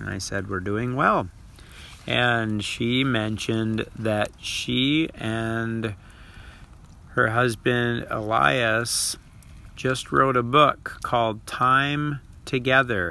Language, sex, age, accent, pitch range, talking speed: English, male, 50-69, American, 100-125 Hz, 100 wpm